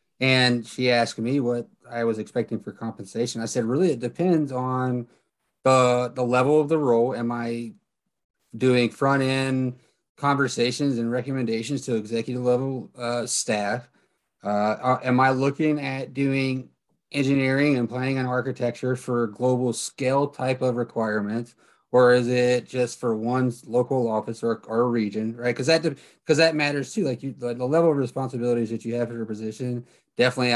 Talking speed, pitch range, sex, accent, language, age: 160 wpm, 115-130 Hz, male, American, English, 30-49